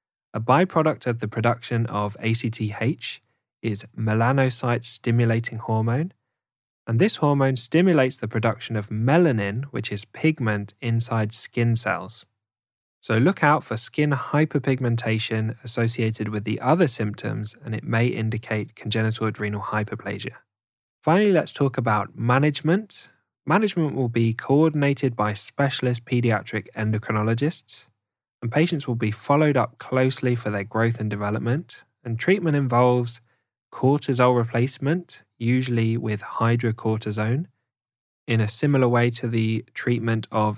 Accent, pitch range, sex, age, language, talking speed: British, 110-135 Hz, male, 10-29, English, 125 wpm